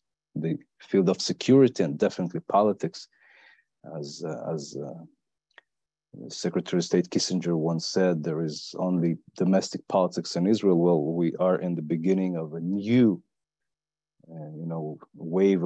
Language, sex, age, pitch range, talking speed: English, male, 40-59, 85-95 Hz, 140 wpm